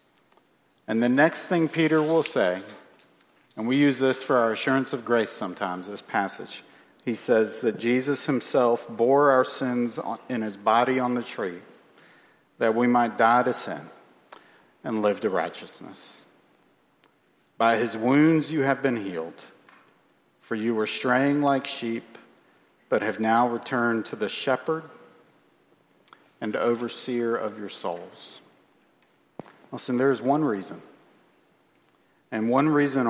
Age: 50-69